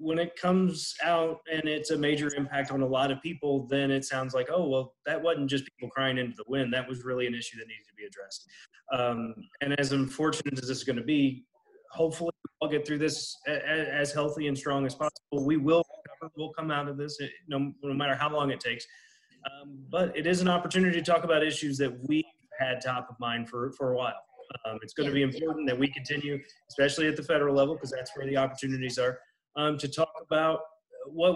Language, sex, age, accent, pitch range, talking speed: English, male, 30-49, American, 130-160 Hz, 225 wpm